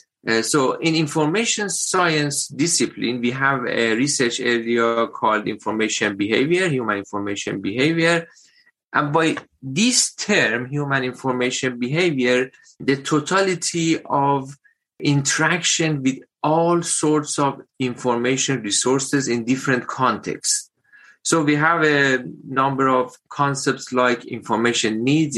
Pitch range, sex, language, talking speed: 120-160 Hz, male, English, 110 wpm